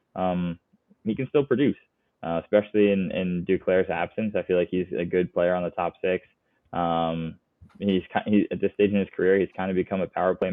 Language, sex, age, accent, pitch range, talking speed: English, male, 20-39, American, 85-100 Hz, 215 wpm